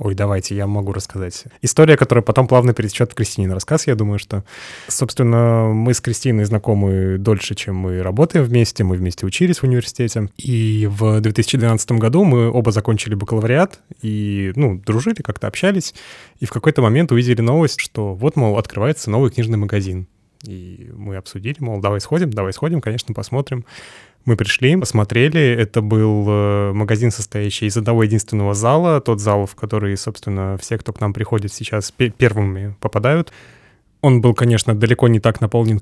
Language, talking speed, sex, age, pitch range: Russian, 165 wpm, male, 20-39, 100-120 Hz